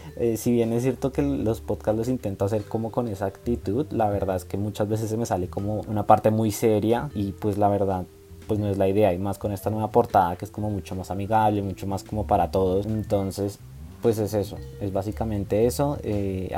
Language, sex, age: Spanish, male, 20-39